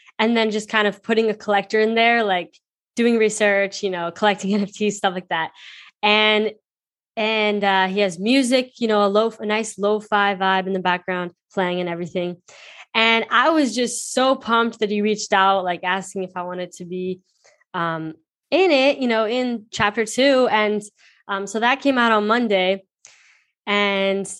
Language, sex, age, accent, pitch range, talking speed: English, female, 10-29, American, 180-220 Hz, 180 wpm